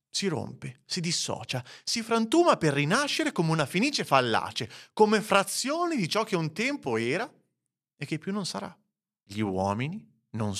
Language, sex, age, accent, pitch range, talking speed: Italian, male, 30-49, native, 130-210 Hz, 160 wpm